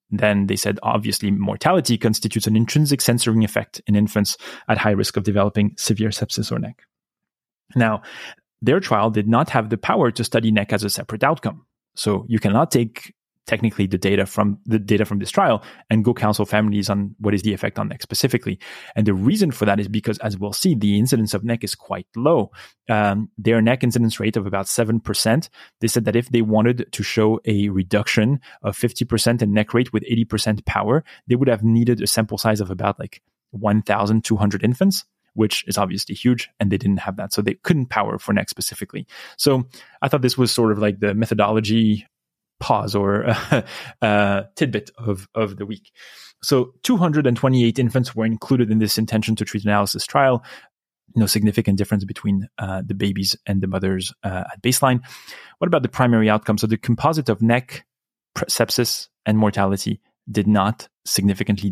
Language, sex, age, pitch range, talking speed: English, male, 30-49, 105-115 Hz, 185 wpm